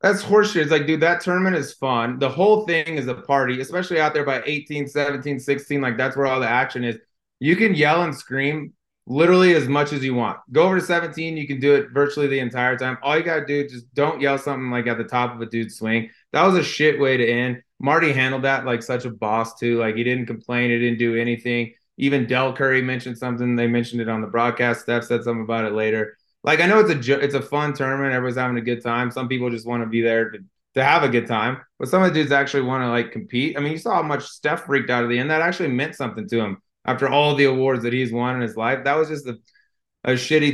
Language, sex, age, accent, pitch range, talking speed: English, male, 20-39, American, 120-145 Hz, 265 wpm